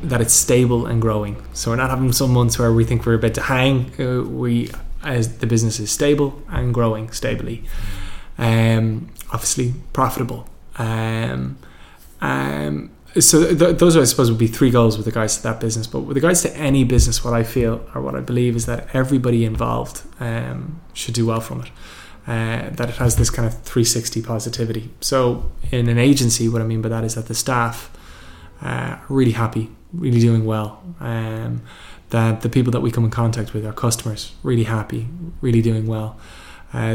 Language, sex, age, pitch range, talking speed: English, male, 20-39, 110-125 Hz, 190 wpm